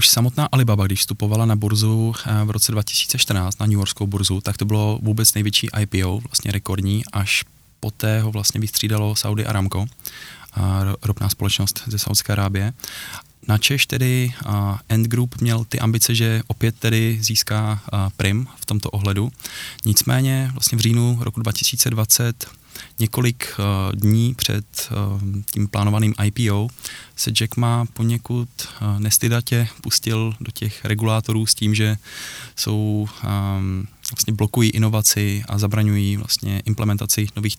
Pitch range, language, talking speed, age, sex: 100-115 Hz, Czech, 135 wpm, 20-39, male